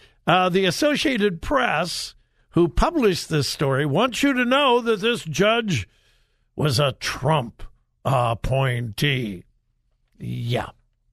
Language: English